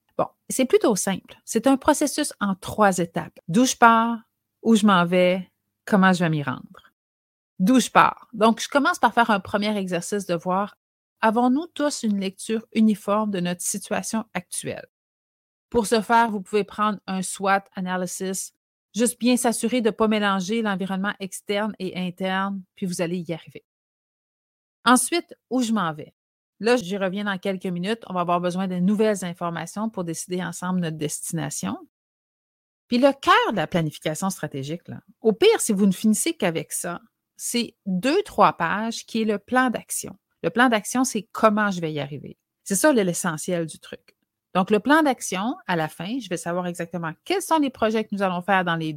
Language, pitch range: French, 180-235 Hz